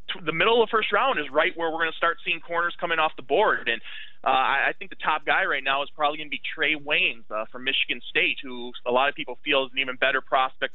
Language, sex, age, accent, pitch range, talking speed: English, male, 20-39, American, 130-170 Hz, 280 wpm